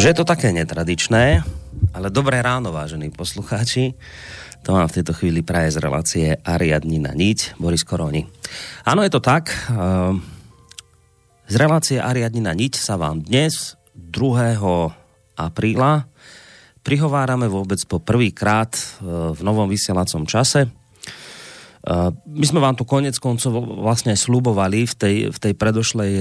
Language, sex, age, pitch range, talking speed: Slovak, male, 30-49, 90-120 Hz, 135 wpm